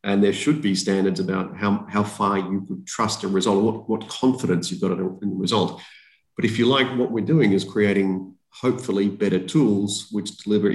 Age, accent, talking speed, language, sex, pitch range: 40-59, Australian, 200 wpm, English, male, 95-115 Hz